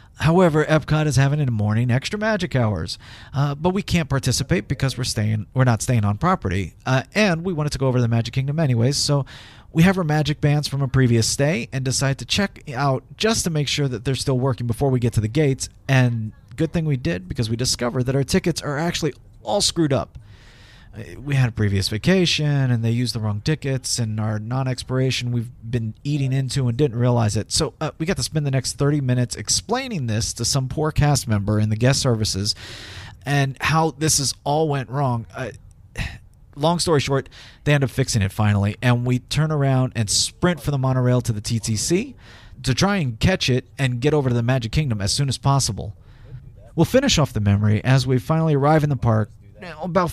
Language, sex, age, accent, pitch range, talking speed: English, male, 40-59, American, 115-150 Hz, 215 wpm